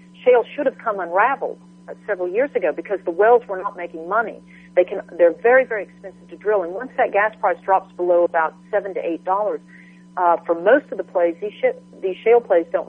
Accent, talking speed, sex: American, 225 wpm, female